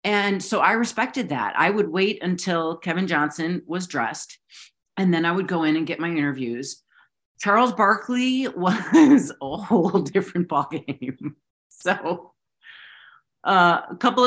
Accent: American